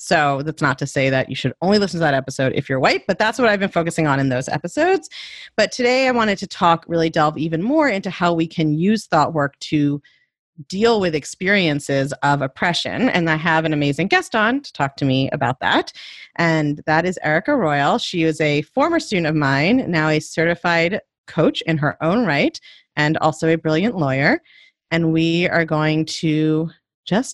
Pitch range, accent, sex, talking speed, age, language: 155-225 Hz, American, female, 205 wpm, 30-49, English